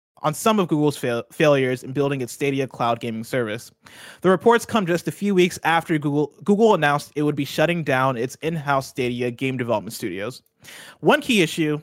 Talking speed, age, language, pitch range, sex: 190 wpm, 20-39, English, 135-175 Hz, male